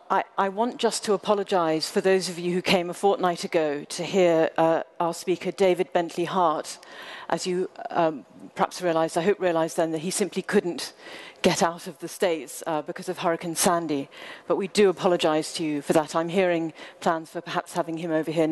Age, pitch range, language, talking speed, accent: 40-59, 165-205 Hz, English, 205 wpm, British